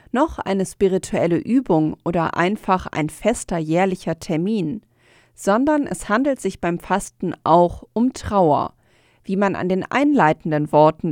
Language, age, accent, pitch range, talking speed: German, 40-59, German, 165-225 Hz, 135 wpm